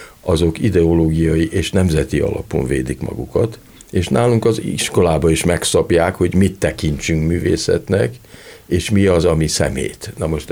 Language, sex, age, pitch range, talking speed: Hungarian, male, 50-69, 80-115 Hz, 135 wpm